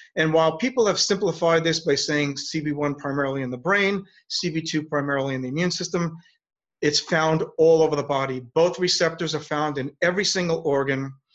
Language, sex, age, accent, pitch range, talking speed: English, male, 40-59, American, 140-180 Hz, 175 wpm